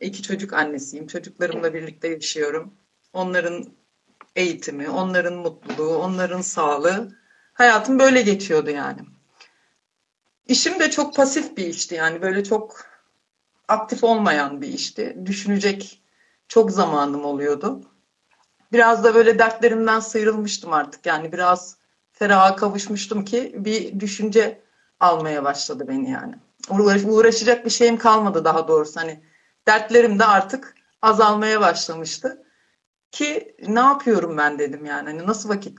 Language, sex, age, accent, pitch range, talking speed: Turkish, female, 60-79, native, 160-220 Hz, 115 wpm